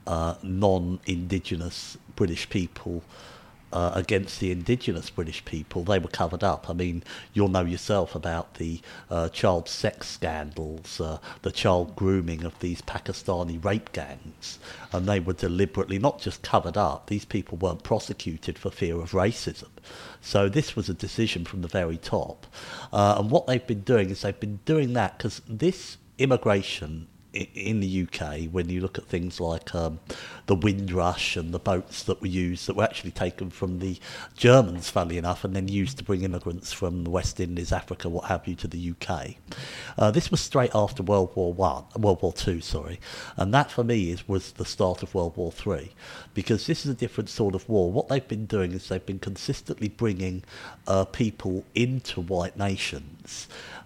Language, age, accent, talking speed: English, 50-69, British, 180 wpm